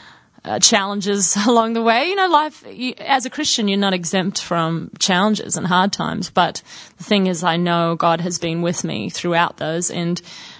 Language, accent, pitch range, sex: English, Australian, 175-195 Hz, female